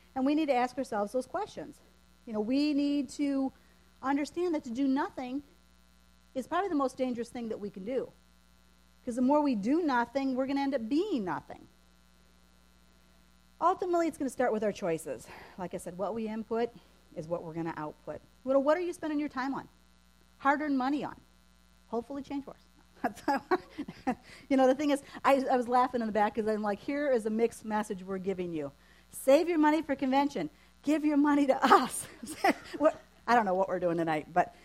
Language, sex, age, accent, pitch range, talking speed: English, female, 40-59, American, 195-290 Hz, 195 wpm